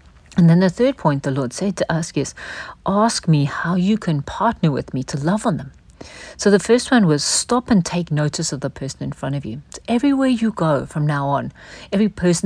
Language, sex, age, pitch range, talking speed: English, female, 50-69, 150-205 Hz, 230 wpm